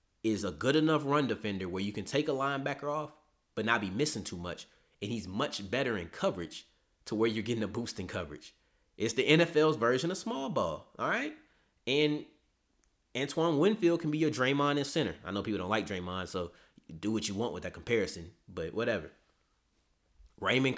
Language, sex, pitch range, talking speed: English, male, 100-150 Hz, 195 wpm